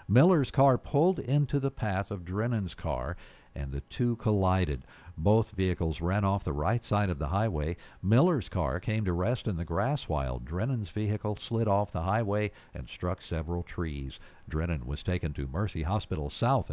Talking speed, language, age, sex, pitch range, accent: 175 wpm, English, 60-79, male, 80-115 Hz, American